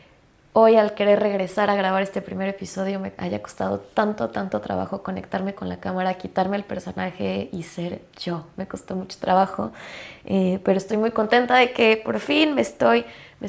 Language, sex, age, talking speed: Spanish, female, 20-39, 180 wpm